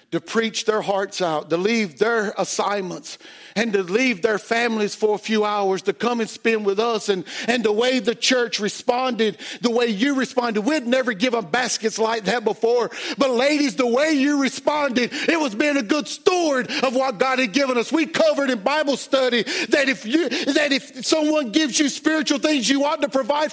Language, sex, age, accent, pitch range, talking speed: English, male, 50-69, American, 205-285 Hz, 195 wpm